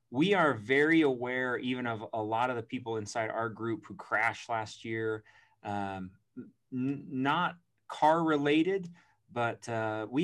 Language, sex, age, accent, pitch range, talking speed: English, male, 30-49, American, 115-145 Hz, 145 wpm